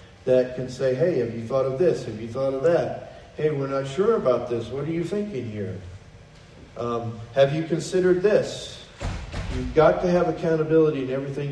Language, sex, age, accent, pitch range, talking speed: English, male, 40-59, American, 115-170 Hz, 195 wpm